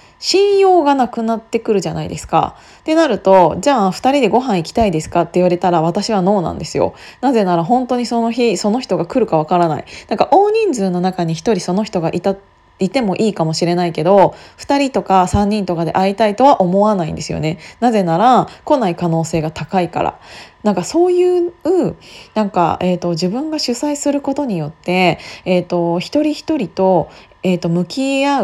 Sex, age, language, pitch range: female, 20-39, Japanese, 180-270 Hz